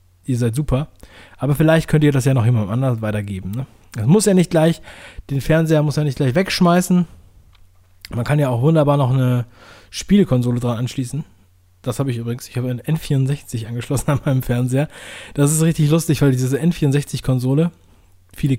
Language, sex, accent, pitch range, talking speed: German, male, German, 115-150 Hz, 180 wpm